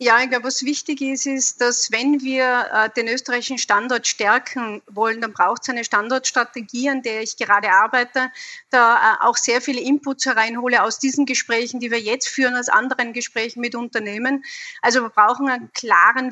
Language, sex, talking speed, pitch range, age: German, female, 185 wpm, 235-270 Hz, 30-49